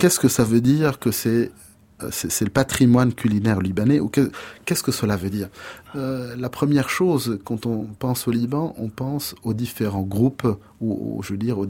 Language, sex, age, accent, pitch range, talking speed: French, male, 30-49, French, 105-135 Hz, 190 wpm